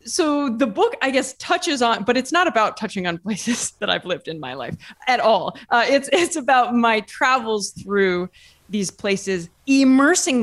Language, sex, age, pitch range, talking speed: English, female, 20-39, 175-255 Hz, 185 wpm